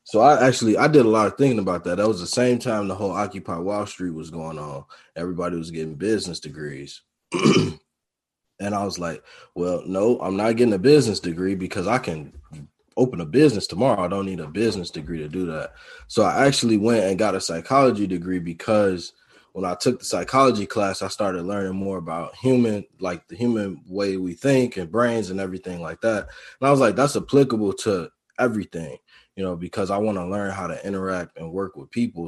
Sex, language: male, English